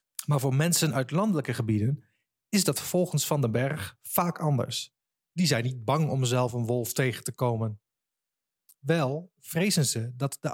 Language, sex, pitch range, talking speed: Dutch, male, 130-180 Hz, 170 wpm